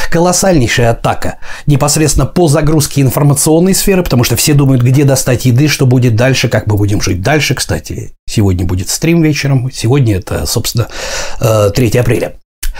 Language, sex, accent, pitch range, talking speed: Russian, male, native, 115-155 Hz, 150 wpm